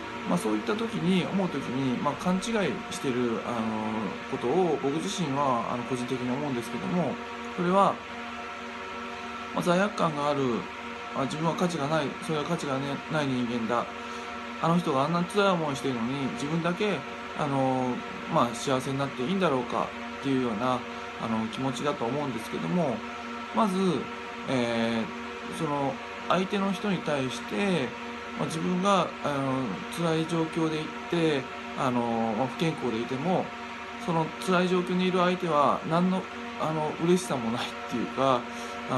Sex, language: male, Japanese